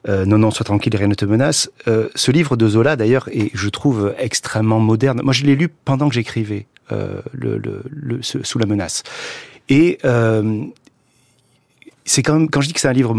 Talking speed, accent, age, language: 215 wpm, French, 40-59, French